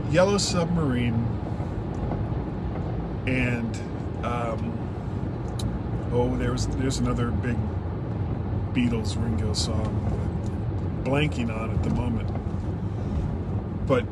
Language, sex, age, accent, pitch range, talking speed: English, male, 40-59, American, 100-125 Hz, 75 wpm